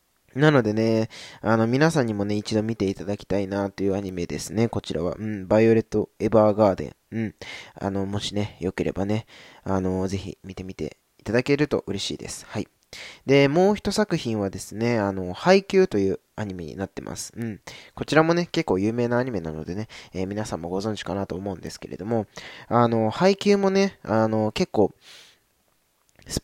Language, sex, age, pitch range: Japanese, male, 20-39, 95-125 Hz